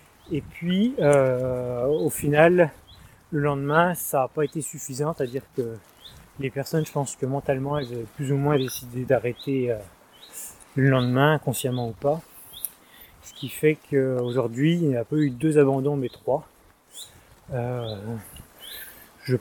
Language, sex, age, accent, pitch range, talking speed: French, male, 30-49, French, 125-155 Hz, 145 wpm